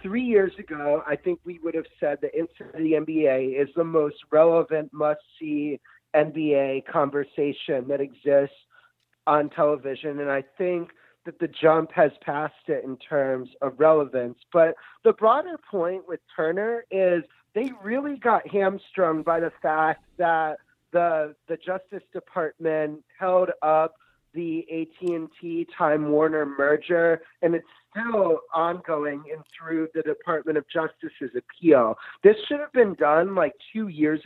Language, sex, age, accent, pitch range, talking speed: English, male, 30-49, American, 155-185 Hz, 140 wpm